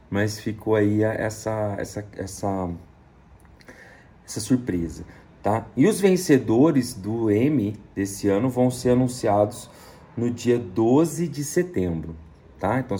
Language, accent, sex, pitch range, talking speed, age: Portuguese, Brazilian, male, 95-120 Hz, 120 wpm, 40-59